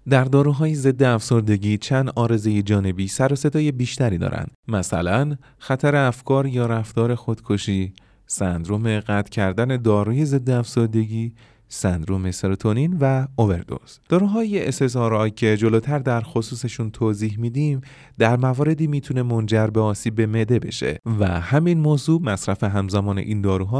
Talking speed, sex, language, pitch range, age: 125 wpm, male, Persian, 105-140 Hz, 30-49